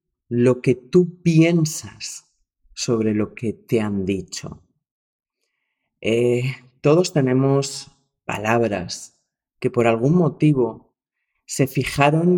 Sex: male